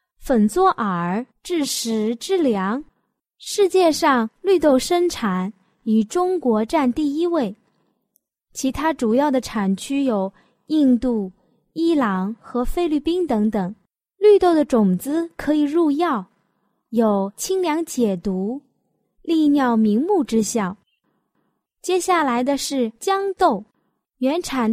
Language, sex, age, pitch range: Chinese, female, 20-39, 215-315 Hz